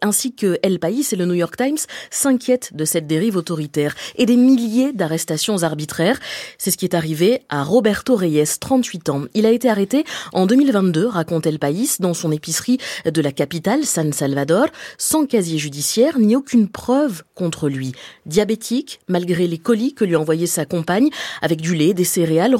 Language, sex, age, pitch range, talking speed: French, female, 20-39, 165-240 Hz, 180 wpm